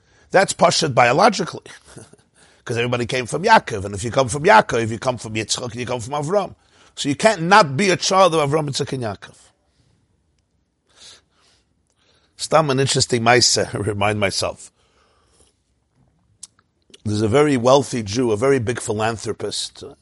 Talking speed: 155 wpm